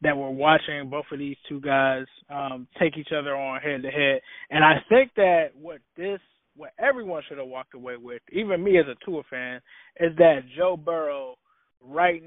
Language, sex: English, male